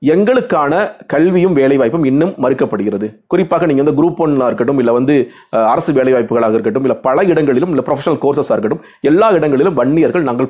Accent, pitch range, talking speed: native, 130-185 Hz, 130 wpm